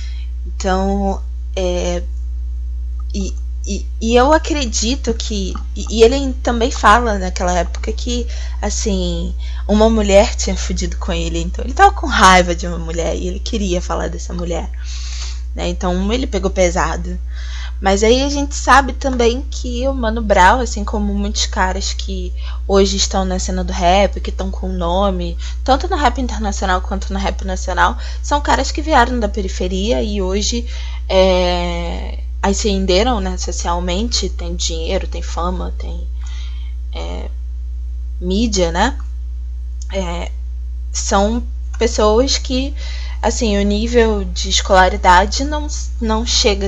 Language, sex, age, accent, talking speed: Portuguese, female, 20-39, Brazilian, 135 wpm